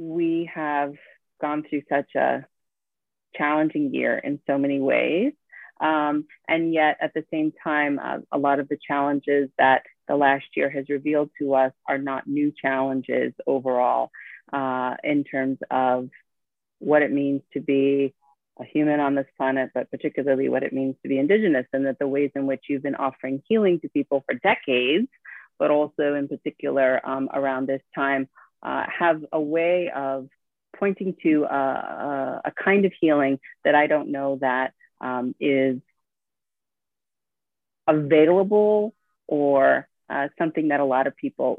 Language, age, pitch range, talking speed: English, 30-49, 135-155 Hz, 160 wpm